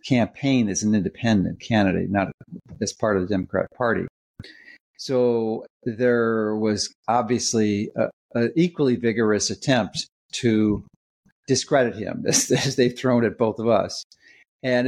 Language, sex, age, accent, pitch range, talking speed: English, male, 50-69, American, 105-130 Hz, 130 wpm